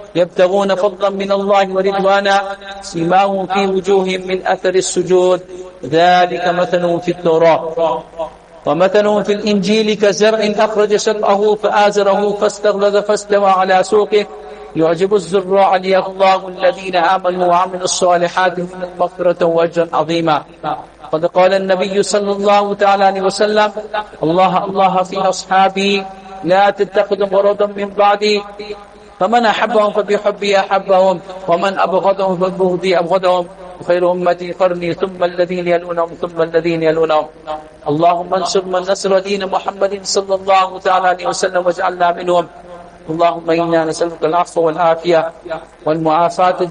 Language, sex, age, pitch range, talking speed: English, male, 50-69, 170-195 Hz, 115 wpm